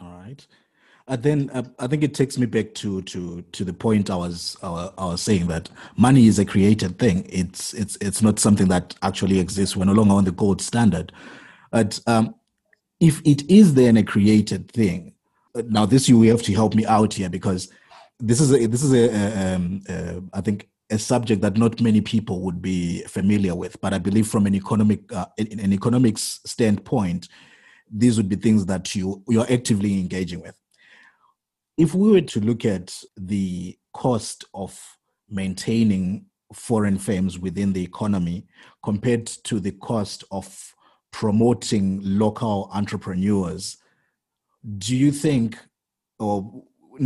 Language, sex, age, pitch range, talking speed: English, male, 30-49, 95-115 Hz, 170 wpm